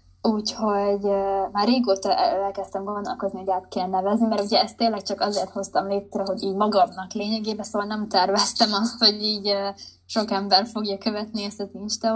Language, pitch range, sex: Hungarian, 190-230 Hz, female